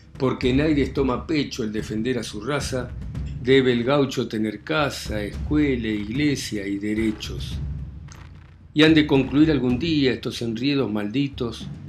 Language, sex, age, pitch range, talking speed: Spanish, male, 60-79, 105-135 Hz, 140 wpm